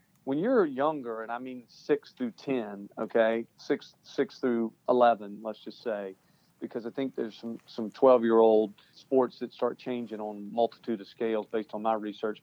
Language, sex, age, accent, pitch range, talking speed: English, male, 40-59, American, 115-135 Hz, 190 wpm